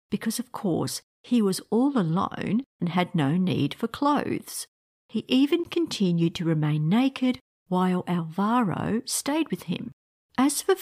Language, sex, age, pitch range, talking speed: English, female, 50-69, 175-245 Hz, 145 wpm